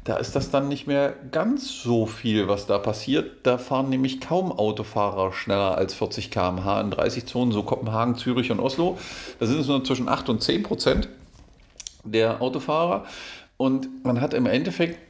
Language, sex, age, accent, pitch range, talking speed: German, male, 50-69, German, 105-135 Hz, 180 wpm